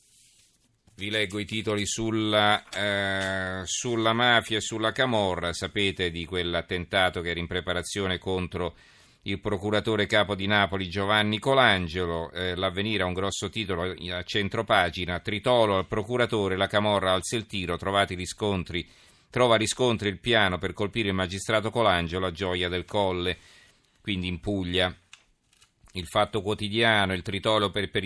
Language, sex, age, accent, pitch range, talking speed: Italian, male, 40-59, native, 90-110 Hz, 140 wpm